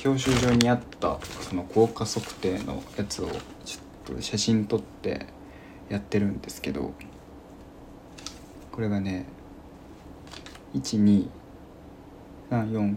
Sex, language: male, Japanese